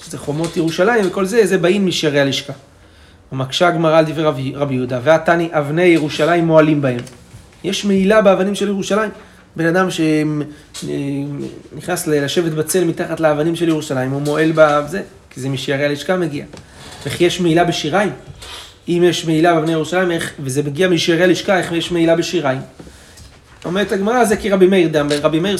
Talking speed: 160 wpm